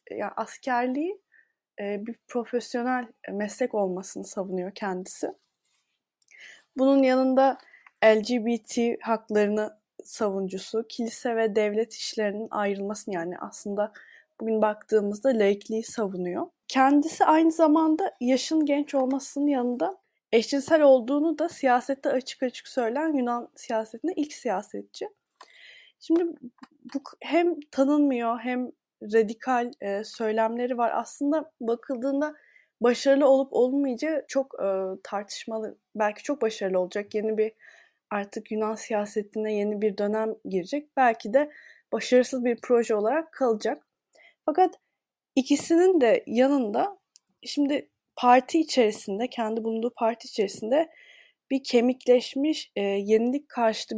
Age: 20-39